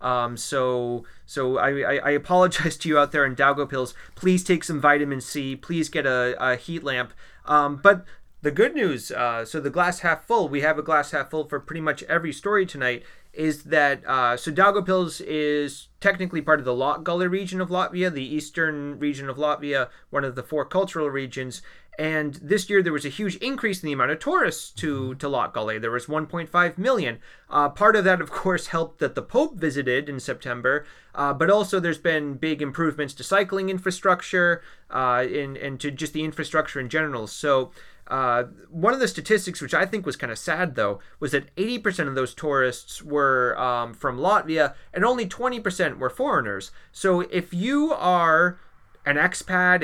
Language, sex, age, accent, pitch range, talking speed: English, male, 30-49, American, 140-180 Hz, 190 wpm